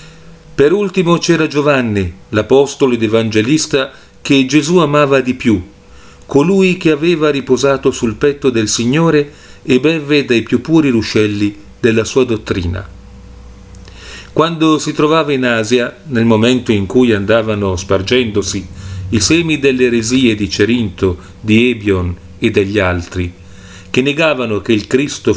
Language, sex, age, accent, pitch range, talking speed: Italian, male, 40-59, native, 100-145 Hz, 130 wpm